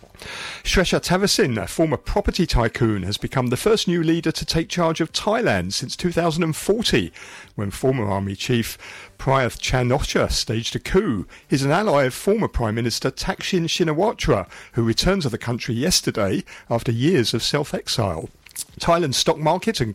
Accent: British